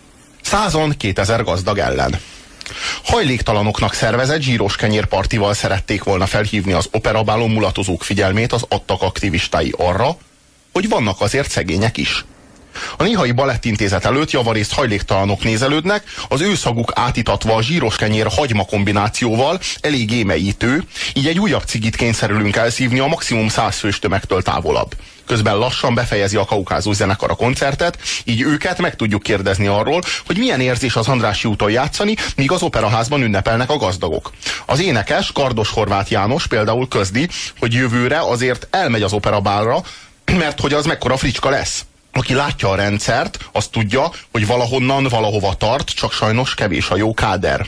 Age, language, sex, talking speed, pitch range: 30-49, Hungarian, male, 140 wpm, 105-130 Hz